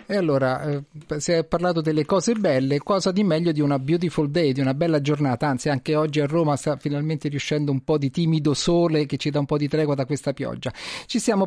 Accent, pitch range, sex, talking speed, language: native, 150-200 Hz, male, 235 wpm, Italian